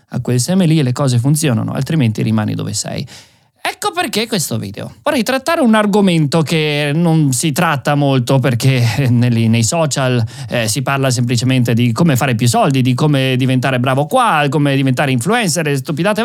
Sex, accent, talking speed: male, native, 170 wpm